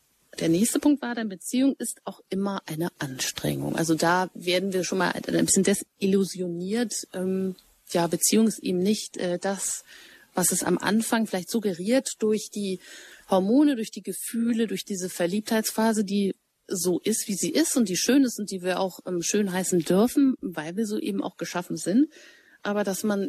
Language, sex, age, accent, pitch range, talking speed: German, female, 30-49, German, 185-225 Hz, 175 wpm